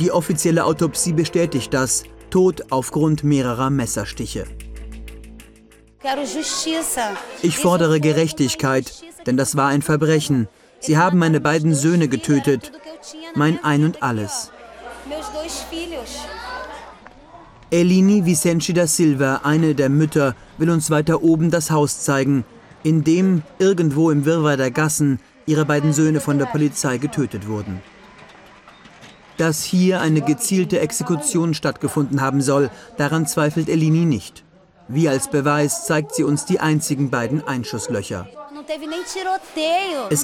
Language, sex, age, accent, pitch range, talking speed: German, male, 40-59, German, 140-175 Hz, 120 wpm